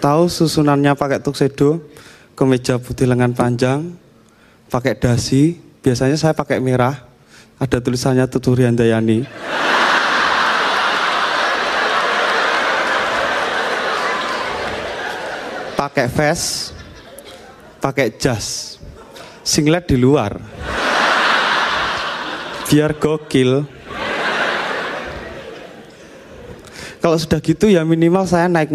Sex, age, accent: male, 20-39, native